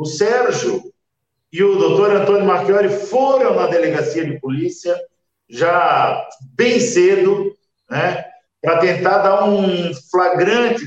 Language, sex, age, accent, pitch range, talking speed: Portuguese, male, 50-69, Brazilian, 160-210 Hz, 115 wpm